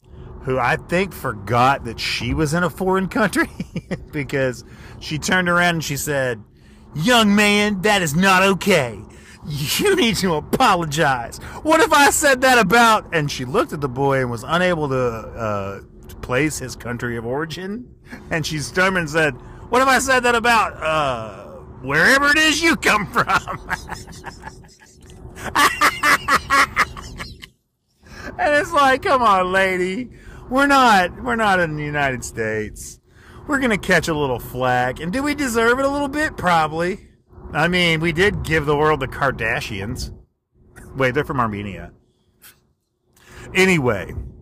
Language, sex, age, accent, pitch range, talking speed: English, male, 40-59, American, 120-190 Hz, 150 wpm